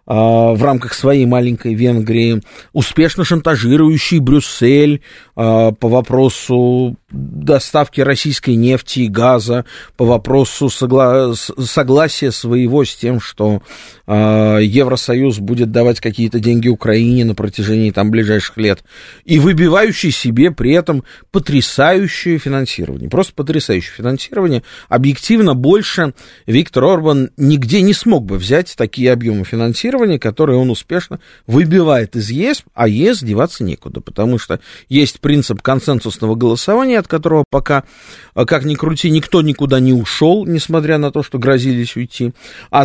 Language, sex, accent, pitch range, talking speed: Russian, male, native, 115-155 Hz, 120 wpm